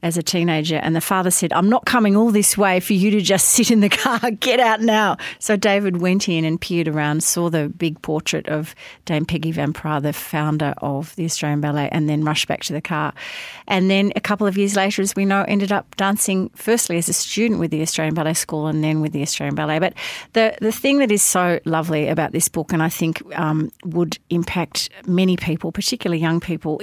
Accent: Australian